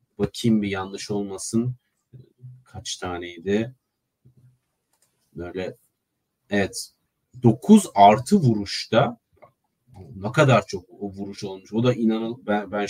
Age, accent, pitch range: 40-59, native, 110-135 Hz